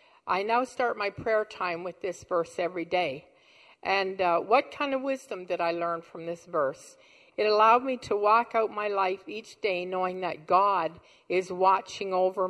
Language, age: English, 50-69